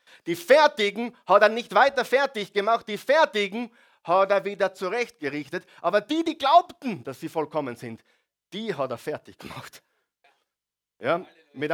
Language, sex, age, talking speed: German, male, 50-69, 145 wpm